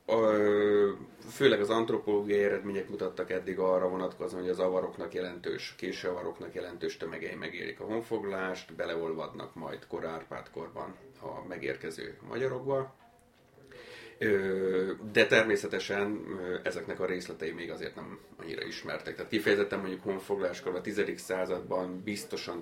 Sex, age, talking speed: male, 30-49, 120 wpm